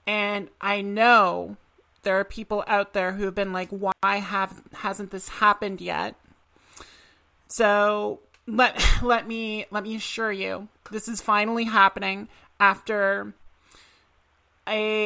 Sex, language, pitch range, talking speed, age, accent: male, English, 195-220 Hz, 130 wpm, 30-49, American